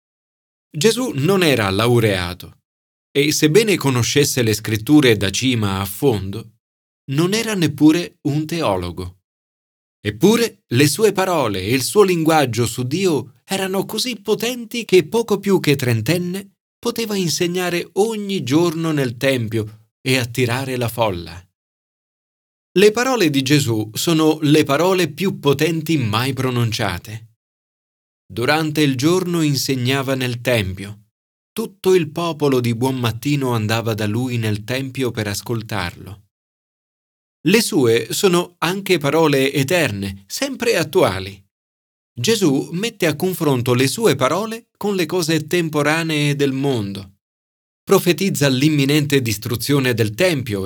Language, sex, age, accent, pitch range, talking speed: Italian, male, 40-59, native, 110-165 Hz, 120 wpm